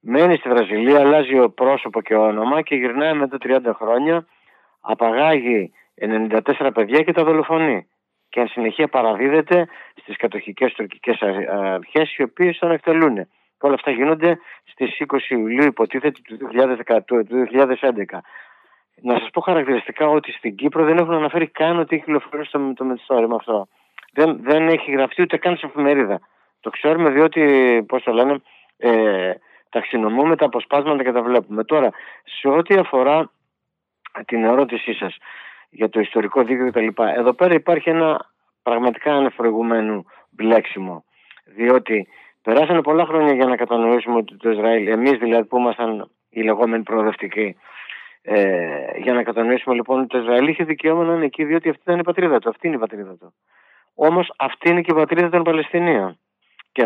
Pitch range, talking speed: 115-155 Hz, 160 wpm